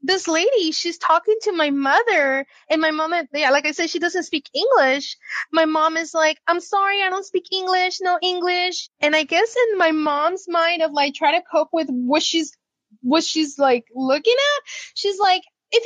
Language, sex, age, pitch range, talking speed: English, female, 20-39, 295-365 Hz, 200 wpm